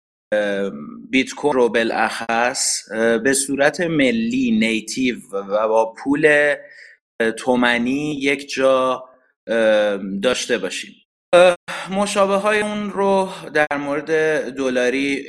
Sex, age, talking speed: male, 30-49, 90 wpm